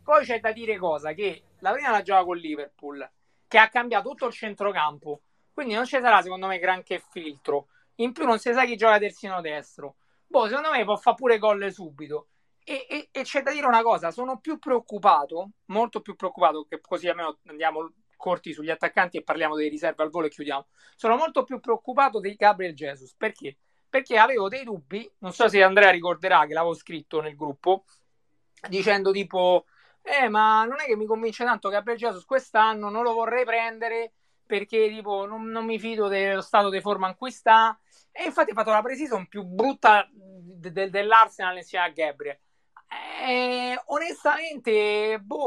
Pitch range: 175-235 Hz